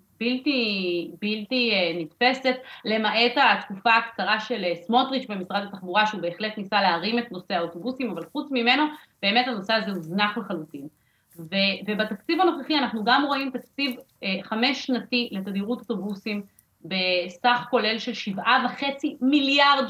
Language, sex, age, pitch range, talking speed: Hebrew, female, 30-49, 195-255 Hz, 135 wpm